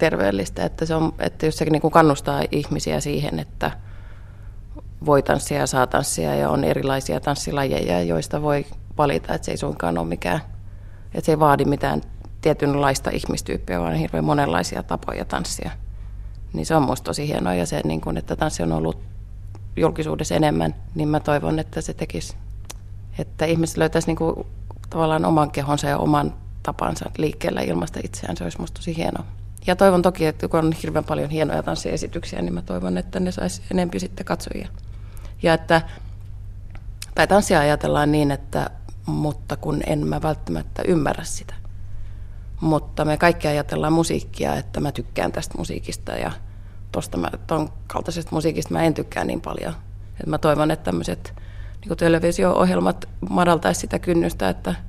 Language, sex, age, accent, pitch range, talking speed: Finnish, female, 30-49, native, 90-150 Hz, 160 wpm